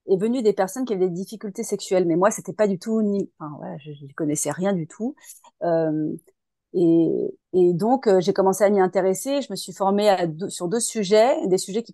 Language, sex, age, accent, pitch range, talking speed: French, female, 30-49, French, 180-215 Hz, 230 wpm